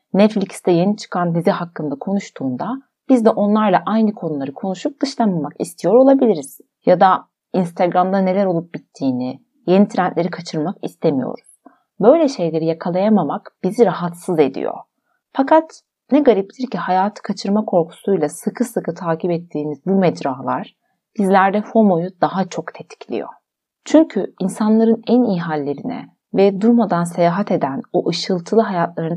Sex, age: female, 30-49